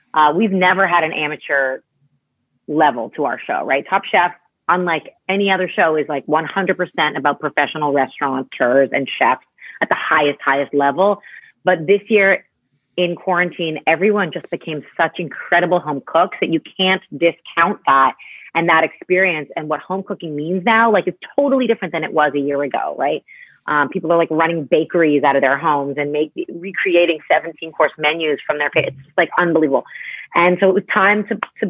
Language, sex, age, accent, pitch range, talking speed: English, female, 30-49, American, 150-185 Hz, 180 wpm